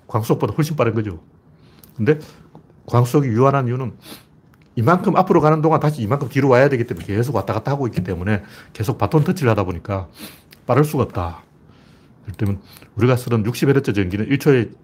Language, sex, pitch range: Korean, male, 100-145 Hz